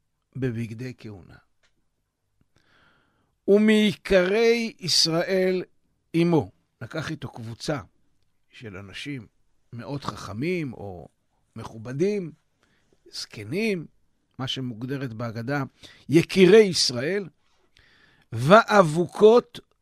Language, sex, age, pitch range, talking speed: Hebrew, male, 60-79, 125-170 Hz, 65 wpm